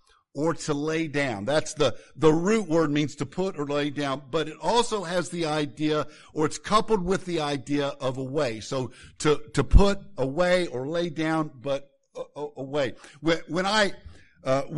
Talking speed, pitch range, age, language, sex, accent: 185 wpm, 145-180 Hz, 50-69, English, male, American